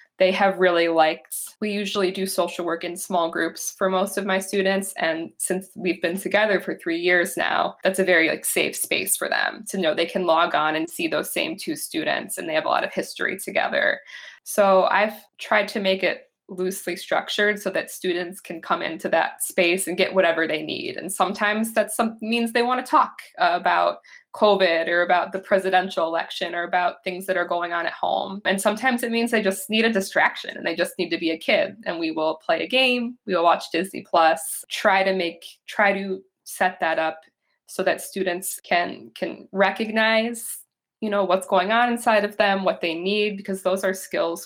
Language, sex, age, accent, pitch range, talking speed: English, female, 20-39, American, 175-210 Hz, 210 wpm